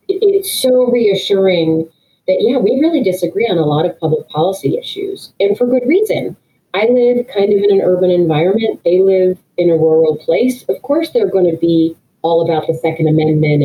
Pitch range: 170-220 Hz